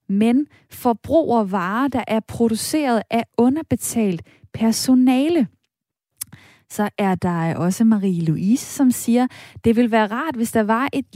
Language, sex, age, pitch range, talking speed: Danish, female, 20-39, 205-255 Hz, 135 wpm